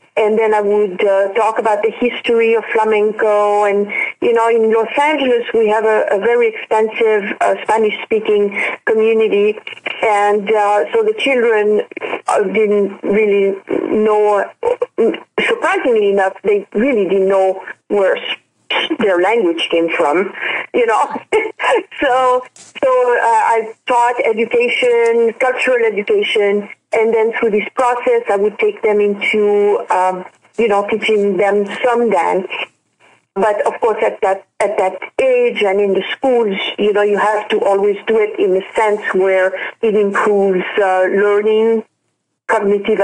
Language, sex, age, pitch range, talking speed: English, female, 40-59, 205-265 Hz, 140 wpm